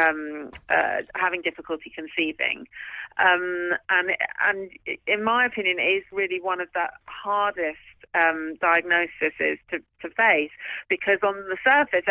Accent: British